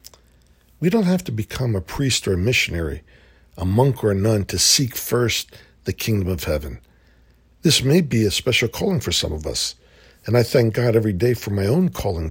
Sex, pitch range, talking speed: male, 85-125 Hz, 205 wpm